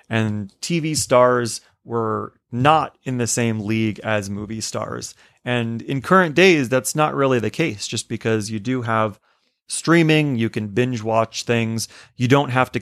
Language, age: English, 30-49